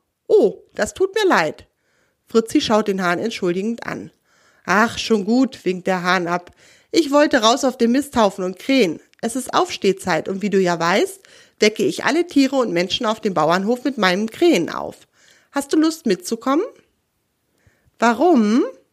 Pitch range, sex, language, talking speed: 195-305 Hz, female, German, 165 wpm